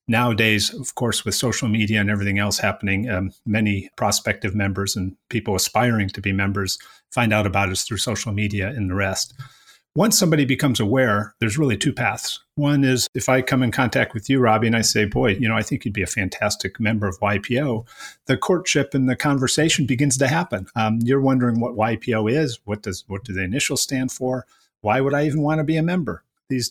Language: English